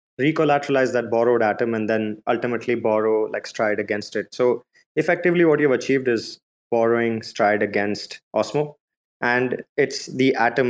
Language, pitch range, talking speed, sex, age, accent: English, 110-125 Hz, 145 wpm, male, 20-39, Indian